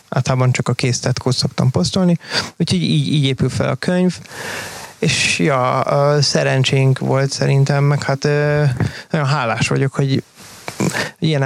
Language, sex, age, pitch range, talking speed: Hungarian, male, 30-49, 135-150 Hz, 130 wpm